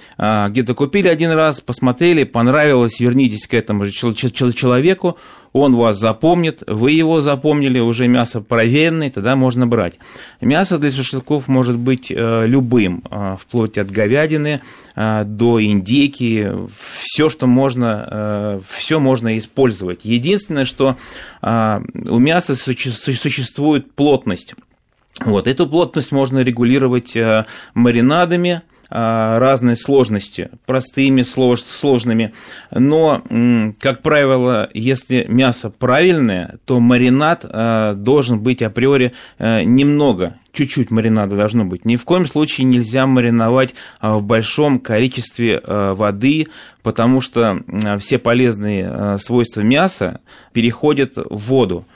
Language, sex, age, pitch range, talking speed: Russian, male, 30-49, 110-135 Hz, 100 wpm